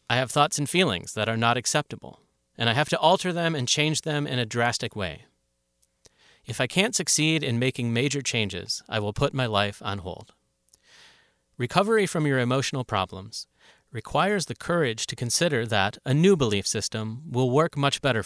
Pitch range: 100-140 Hz